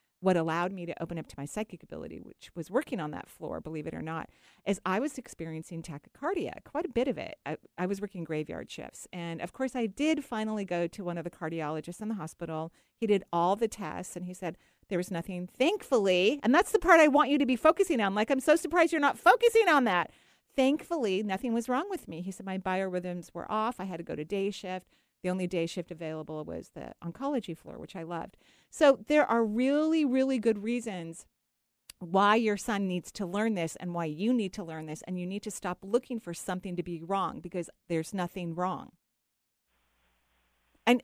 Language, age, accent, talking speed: English, 40-59, American, 220 wpm